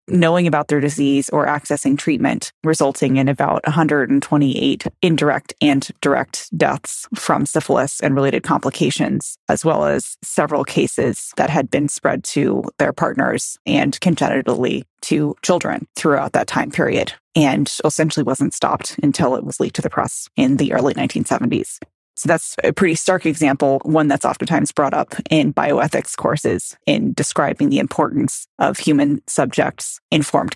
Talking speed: 150 wpm